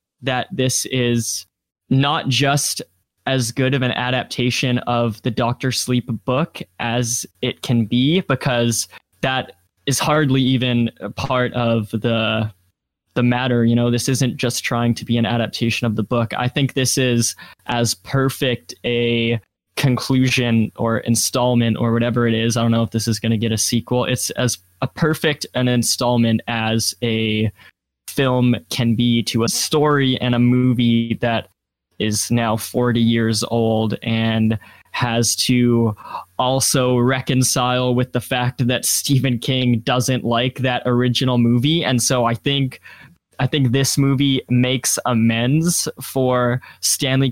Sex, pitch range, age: male, 115-130 Hz, 10-29